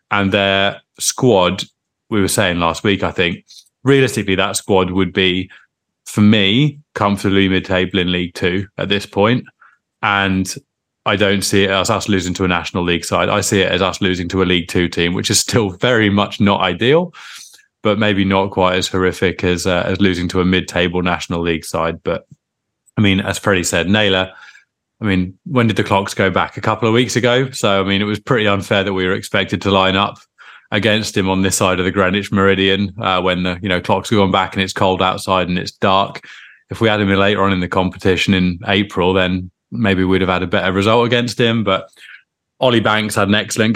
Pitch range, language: 95-105 Hz, English